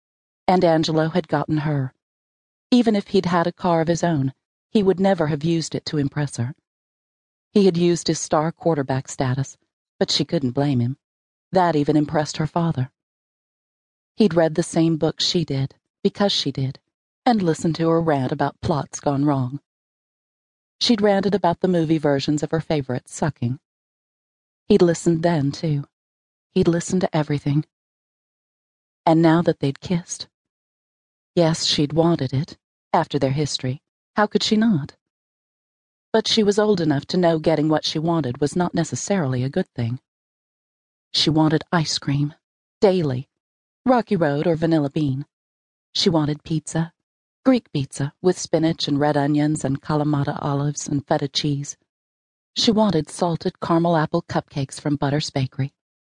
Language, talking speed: English, 155 wpm